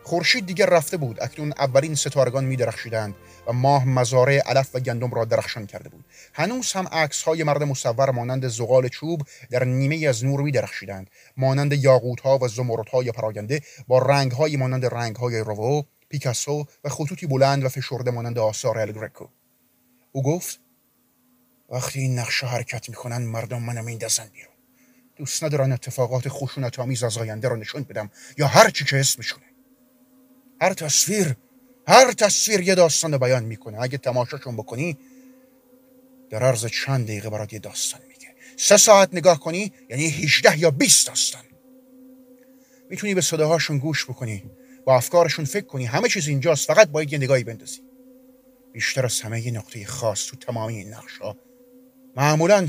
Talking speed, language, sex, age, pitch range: 155 wpm, Persian, male, 30-49, 125-190 Hz